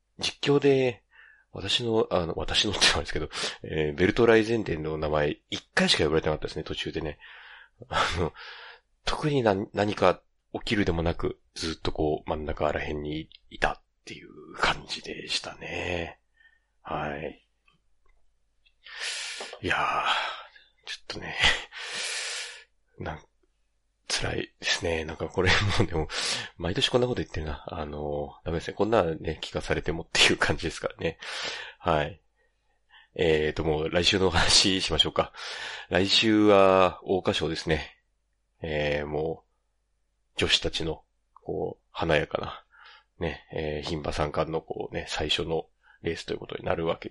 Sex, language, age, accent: male, Japanese, 40-59, native